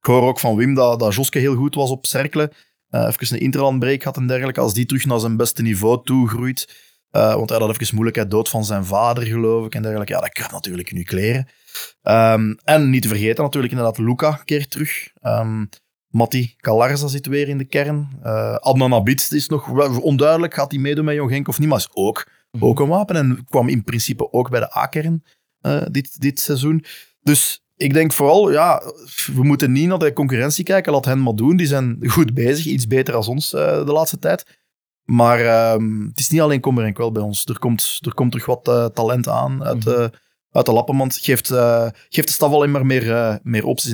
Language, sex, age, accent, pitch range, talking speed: Dutch, male, 20-39, Dutch, 115-145 Hz, 225 wpm